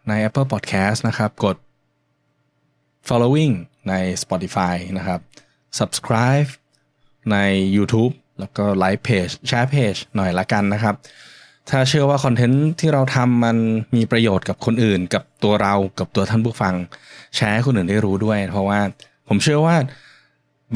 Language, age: Thai, 20-39